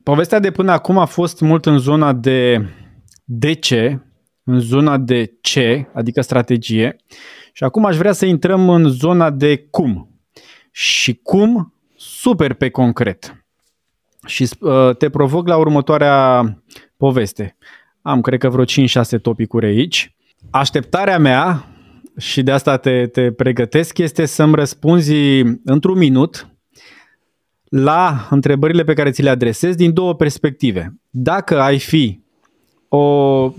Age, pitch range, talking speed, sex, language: 20-39, 120-155 Hz, 130 wpm, male, Romanian